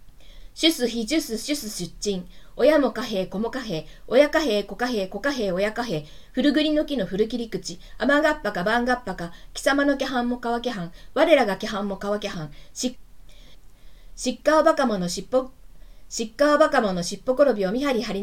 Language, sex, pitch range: Japanese, female, 200-275 Hz